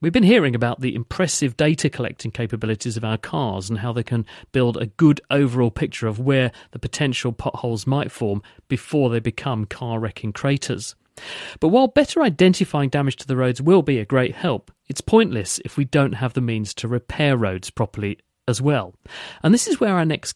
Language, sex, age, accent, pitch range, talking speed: English, male, 40-59, British, 115-150 Hz, 195 wpm